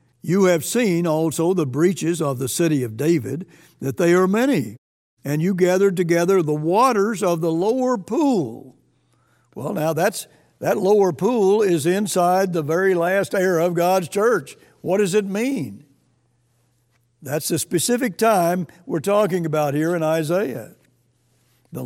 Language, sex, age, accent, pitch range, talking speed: English, male, 60-79, American, 150-195 Hz, 150 wpm